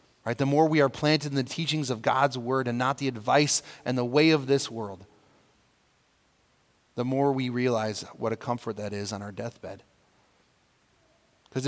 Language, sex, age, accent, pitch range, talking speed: English, male, 30-49, American, 110-140 Hz, 180 wpm